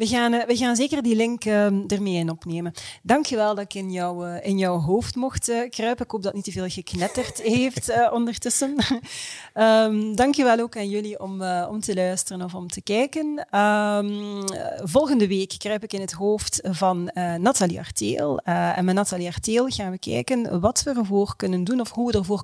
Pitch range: 180-235 Hz